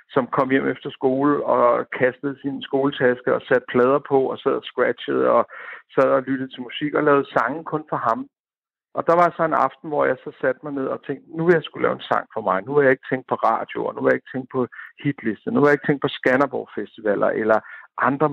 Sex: male